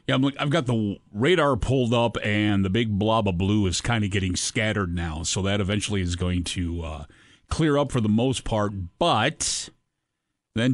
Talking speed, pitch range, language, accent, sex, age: 195 wpm, 95-115 Hz, English, American, male, 40-59